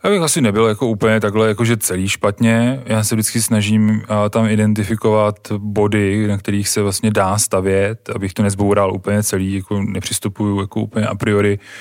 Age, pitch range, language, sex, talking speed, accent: 20-39, 100-110 Hz, Czech, male, 170 wpm, native